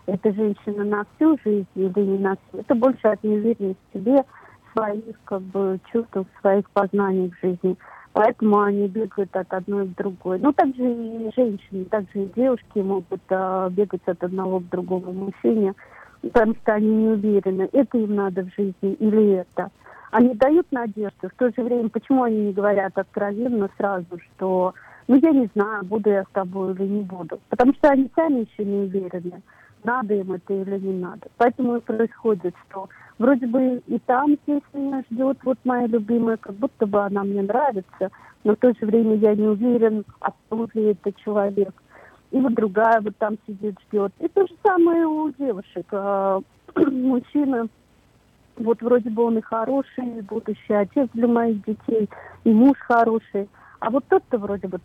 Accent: native